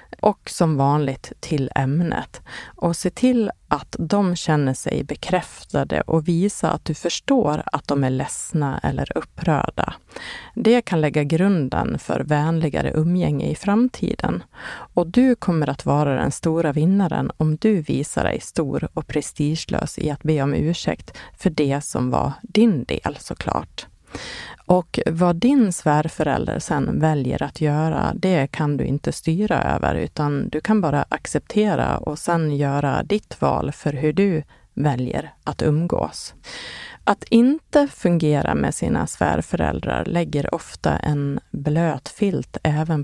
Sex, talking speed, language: female, 140 wpm, Swedish